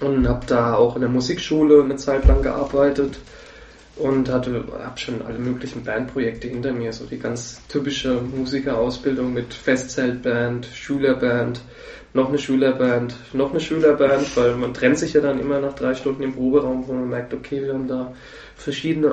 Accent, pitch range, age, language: German, 125-150 Hz, 20-39, German